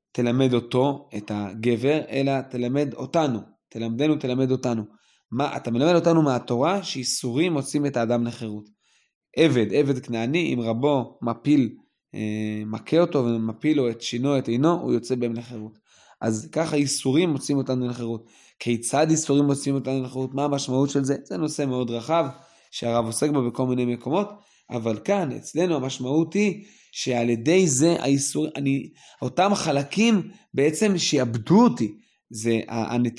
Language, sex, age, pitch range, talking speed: Hebrew, male, 20-39, 120-155 Hz, 145 wpm